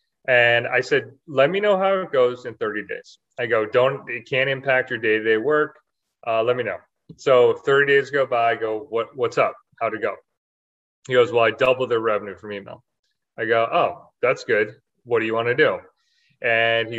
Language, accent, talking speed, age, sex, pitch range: English, American, 210 wpm, 30-49, male, 110-145 Hz